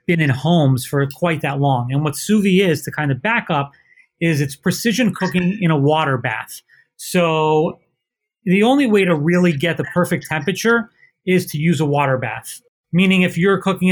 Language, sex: English, male